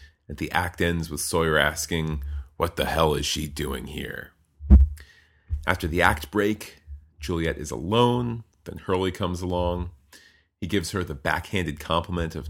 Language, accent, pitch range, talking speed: English, American, 75-95 Hz, 155 wpm